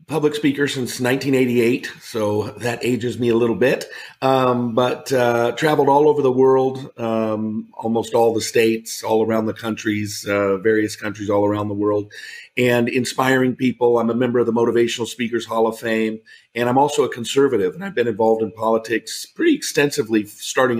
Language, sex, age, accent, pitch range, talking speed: English, male, 50-69, American, 110-130 Hz, 180 wpm